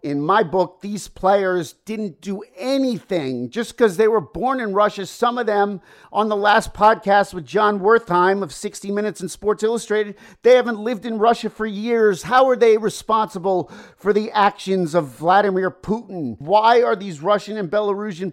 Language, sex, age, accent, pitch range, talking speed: English, male, 50-69, American, 170-210 Hz, 175 wpm